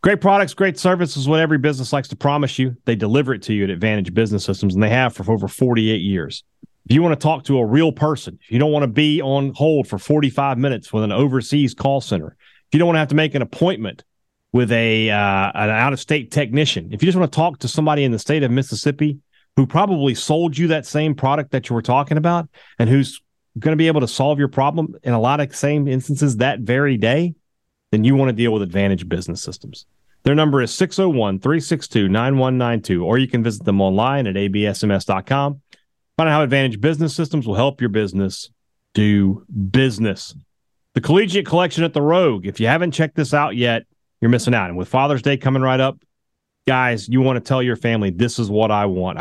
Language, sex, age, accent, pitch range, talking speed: English, male, 30-49, American, 110-150 Hz, 220 wpm